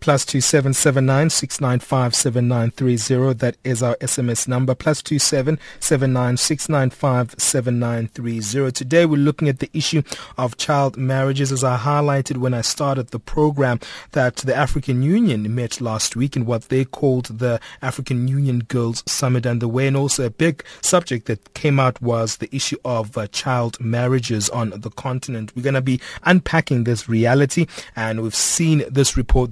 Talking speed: 145 wpm